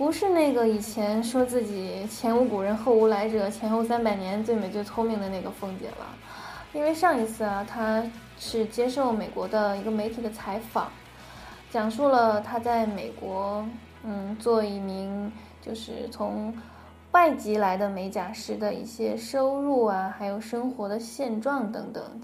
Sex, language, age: female, Chinese, 10-29